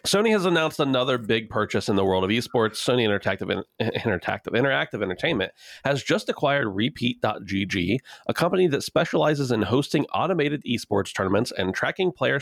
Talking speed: 155 wpm